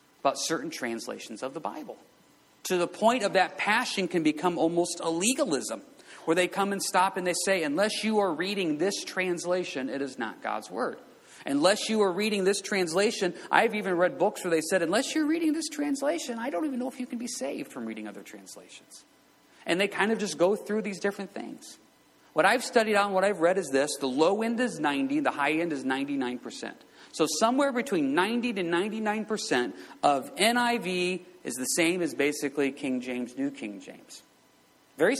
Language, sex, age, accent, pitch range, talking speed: English, male, 40-59, American, 140-210 Hz, 200 wpm